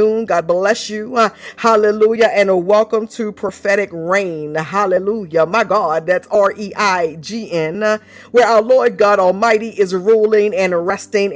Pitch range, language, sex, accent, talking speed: 205-255 Hz, English, female, American, 160 wpm